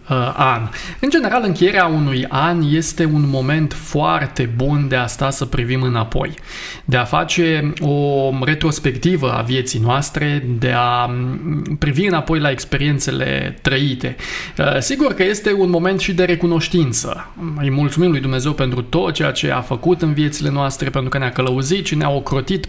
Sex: male